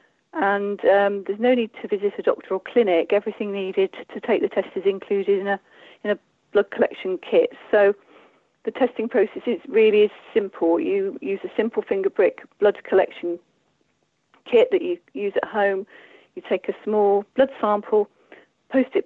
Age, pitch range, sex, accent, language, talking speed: 40-59, 190-275 Hz, female, British, English, 175 wpm